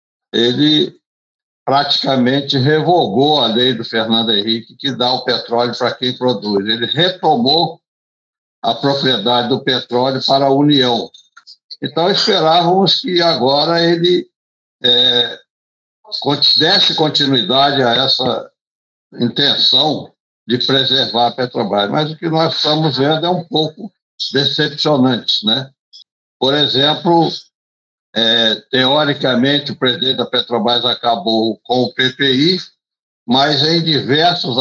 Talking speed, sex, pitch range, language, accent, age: 110 wpm, male, 125-155 Hz, Portuguese, Brazilian, 60-79